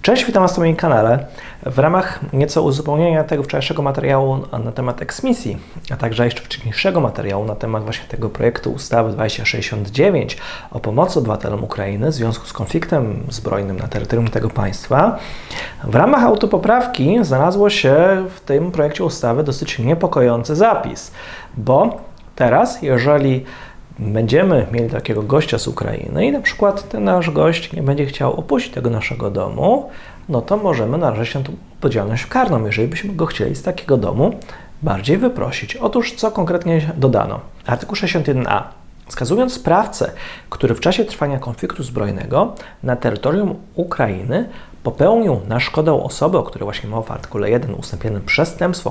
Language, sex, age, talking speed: Polish, male, 30-49, 150 wpm